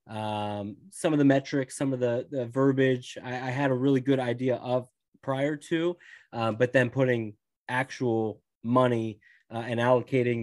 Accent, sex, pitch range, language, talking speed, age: American, male, 110-135 Hz, English, 165 wpm, 20-39